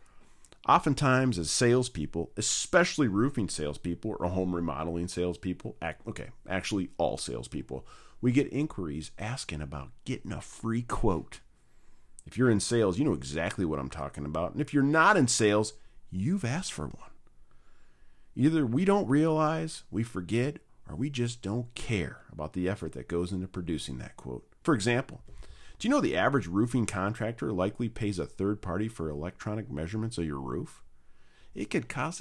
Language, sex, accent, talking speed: English, male, American, 160 wpm